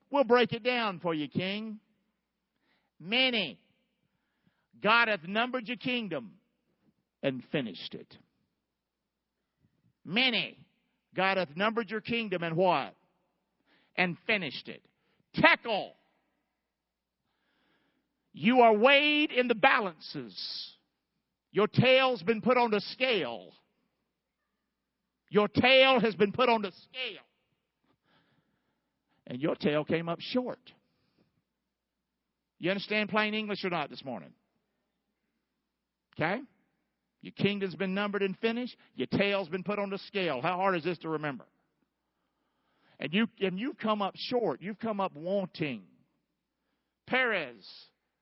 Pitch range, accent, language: 180-235 Hz, American, English